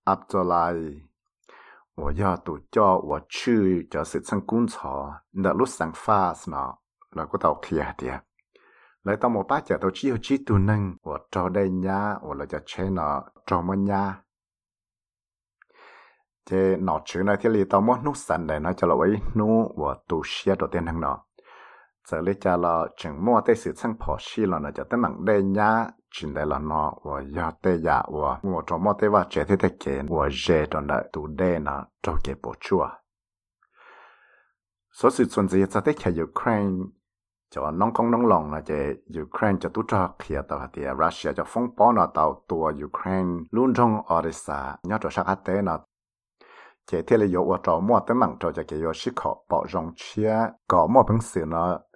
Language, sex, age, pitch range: Spanish, male, 60-79, 85-105 Hz